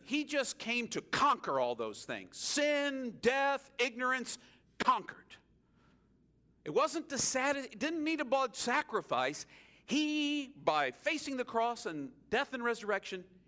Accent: American